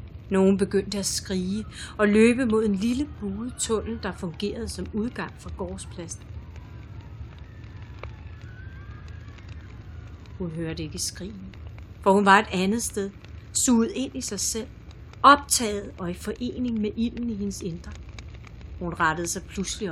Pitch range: 175-220 Hz